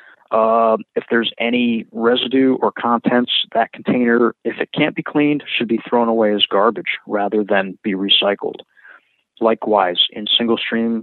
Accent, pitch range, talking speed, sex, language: American, 110-120 Hz, 150 wpm, male, English